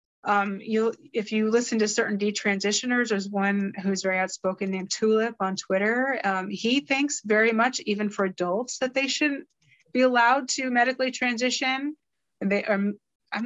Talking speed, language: 145 wpm, English